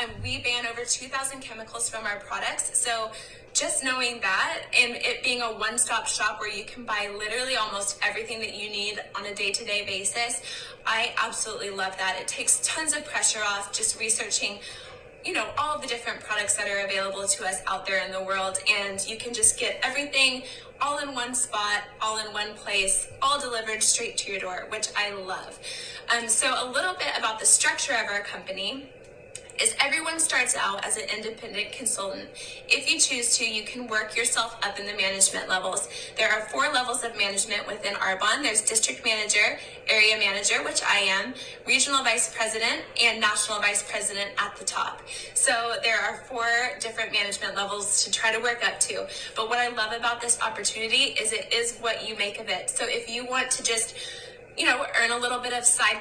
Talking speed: 195 wpm